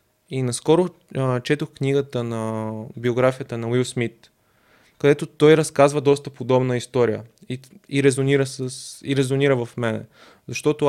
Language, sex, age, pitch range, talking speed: Bulgarian, male, 20-39, 120-140 Hz, 130 wpm